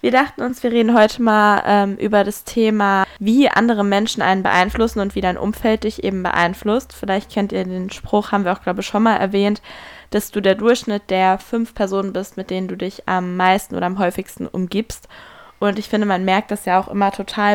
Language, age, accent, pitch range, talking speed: German, 10-29, German, 185-205 Hz, 220 wpm